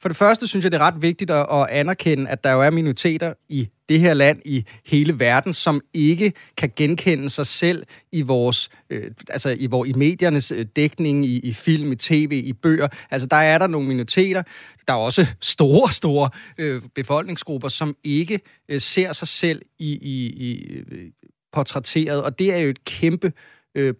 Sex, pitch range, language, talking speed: male, 140-170 Hz, Danish, 190 wpm